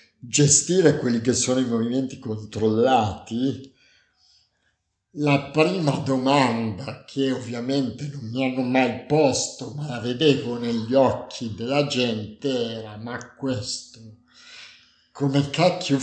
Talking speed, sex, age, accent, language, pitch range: 110 wpm, male, 50-69, native, Italian, 115-145 Hz